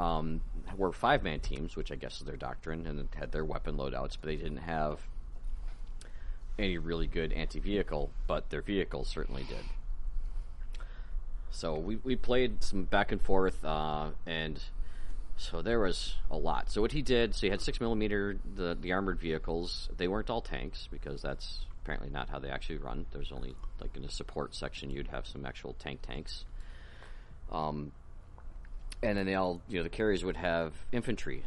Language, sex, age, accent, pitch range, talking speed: English, male, 30-49, American, 70-85 Hz, 175 wpm